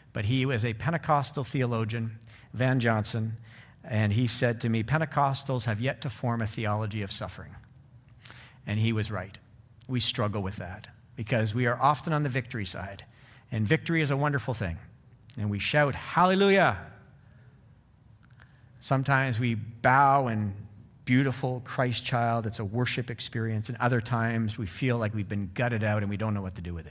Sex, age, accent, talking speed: male, 50-69, American, 170 wpm